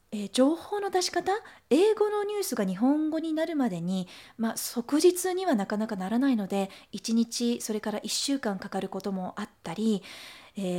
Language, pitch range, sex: Japanese, 200-285 Hz, female